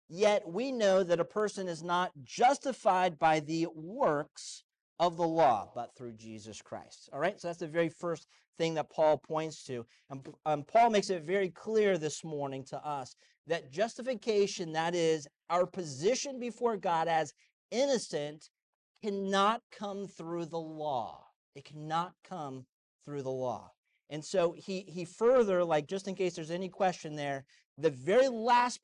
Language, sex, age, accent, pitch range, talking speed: English, male, 40-59, American, 155-220 Hz, 165 wpm